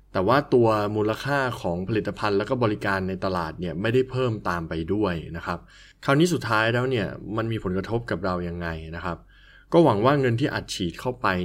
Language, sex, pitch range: Thai, male, 95-125 Hz